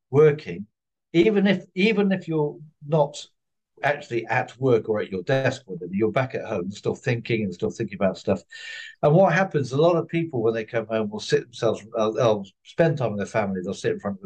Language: English